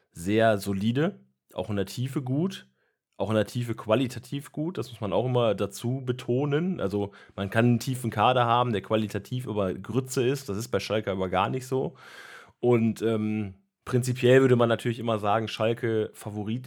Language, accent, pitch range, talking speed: German, German, 100-120 Hz, 180 wpm